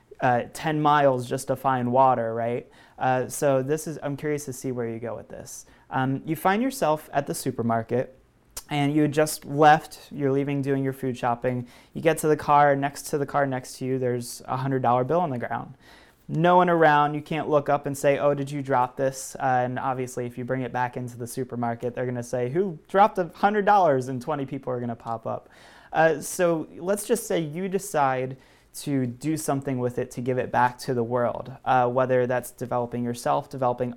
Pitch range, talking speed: 125-145 Hz, 220 wpm